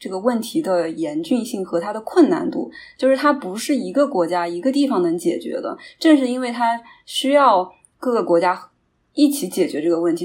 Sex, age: female, 20-39